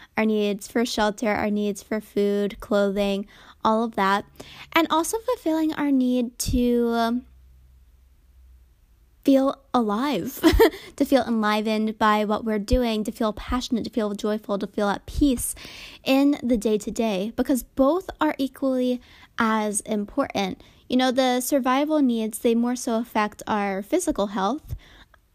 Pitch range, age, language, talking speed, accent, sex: 205-250 Hz, 10-29, English, 140 wpm, American, female